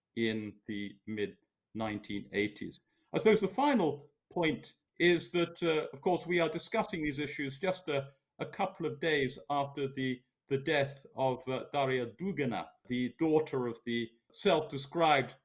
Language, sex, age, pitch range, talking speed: English, male, 50-69, 125-155 Hz, 145 wpm